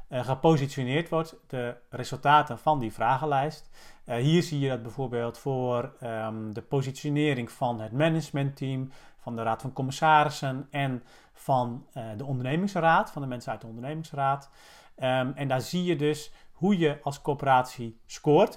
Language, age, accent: Dutch, 40-59, Dutch